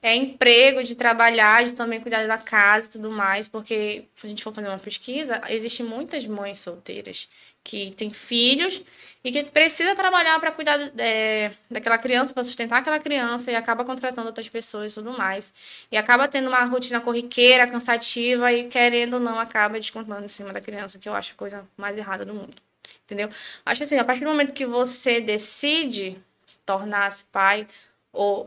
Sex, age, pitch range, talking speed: female, 10-29, 200-250 Hz, 185 wpm